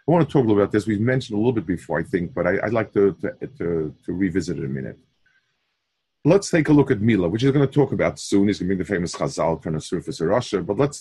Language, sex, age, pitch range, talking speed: English, male, 40-59, 90-130 Hz, 305 wpm